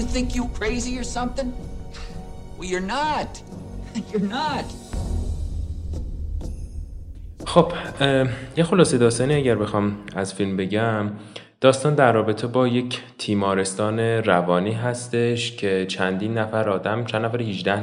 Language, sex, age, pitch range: Persian, male, 20-39, 95-120 Hz